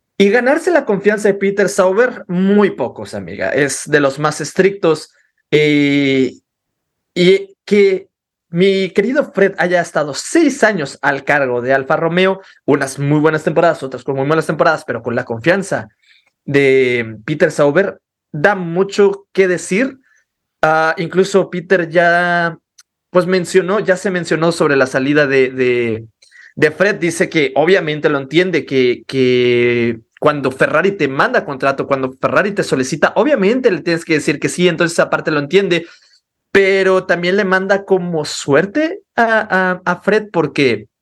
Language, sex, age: Spanish, male, 30-49